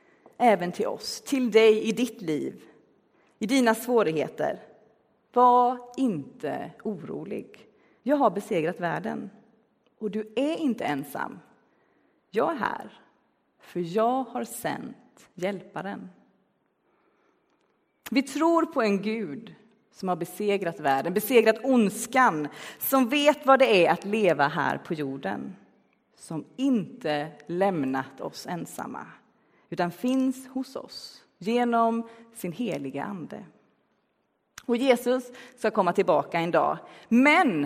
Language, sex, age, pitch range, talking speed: Swedish, female, 30-49, 180-255 Hz, 115 wpm